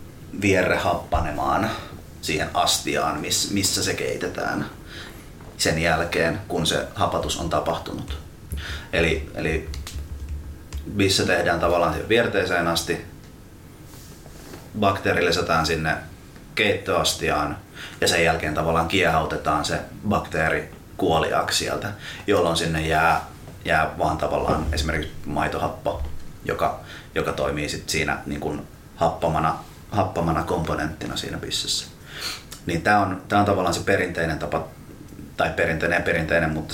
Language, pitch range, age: Finnish, 80-90 Hz, 30-49